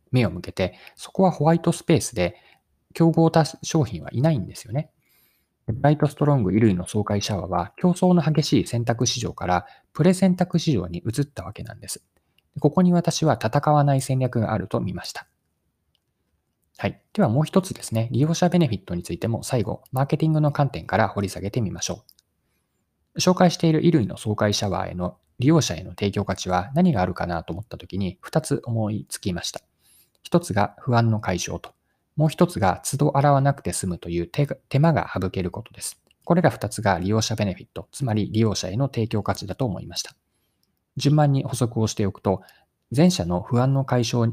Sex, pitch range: male, 95-150 Hz